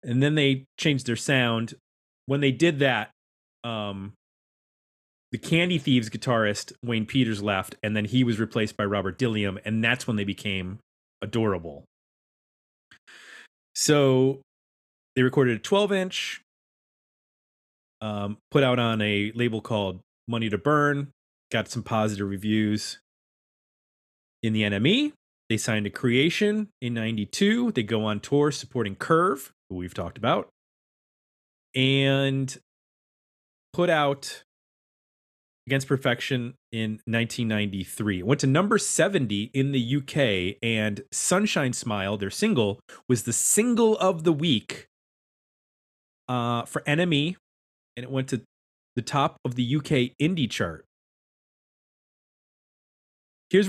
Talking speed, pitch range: 125 wpm, 105-140 Hz